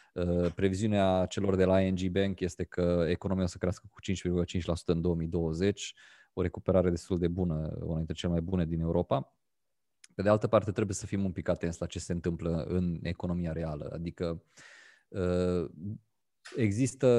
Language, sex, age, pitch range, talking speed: Romanian, male, 20-39, 90-105 Hz, 165 wpm